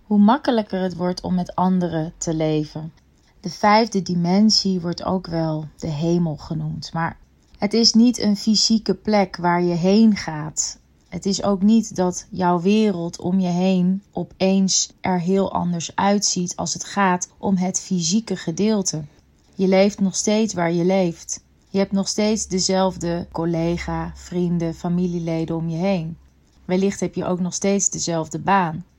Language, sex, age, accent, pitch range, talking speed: Dutch, female, 30-49, Dutch, 170-200 Hz, 160 wpm